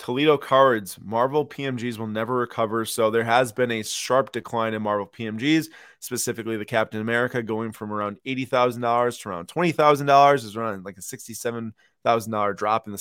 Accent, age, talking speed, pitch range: American, 20-39, 165 wpm, 110-135 Hz